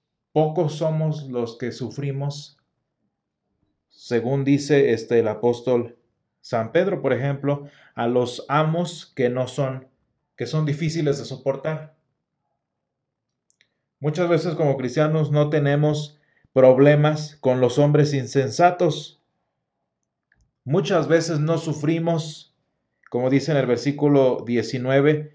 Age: 40-59